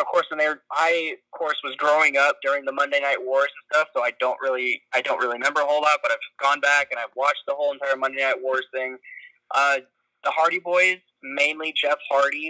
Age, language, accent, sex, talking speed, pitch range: 20-39, English, American, male, 240 wpm, 135-170 Hz